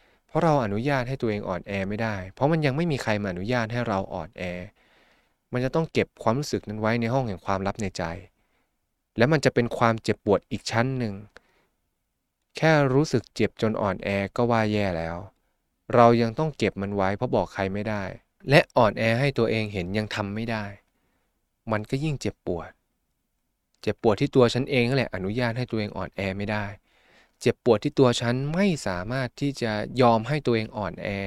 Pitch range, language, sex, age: 100-130 Hz, Thai, male, 20-39